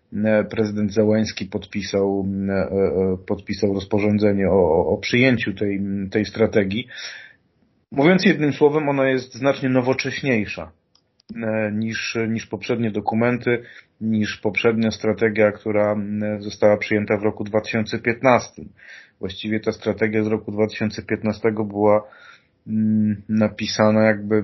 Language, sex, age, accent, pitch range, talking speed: Polish, male, 40-59, native, 105-120 Hz, 100 wpm